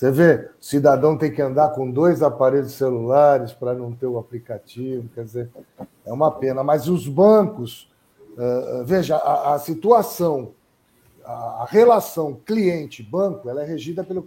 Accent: Brazilian